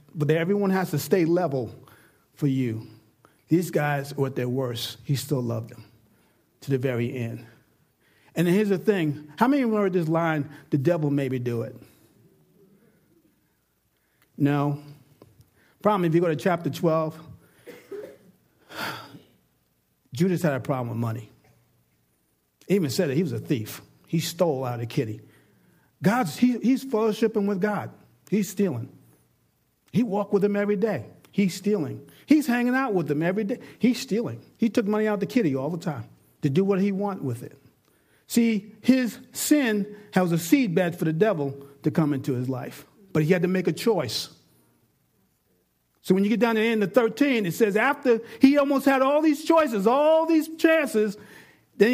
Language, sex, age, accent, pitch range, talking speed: English, male, 50-69, American, 135-215 Hz, 175 wpm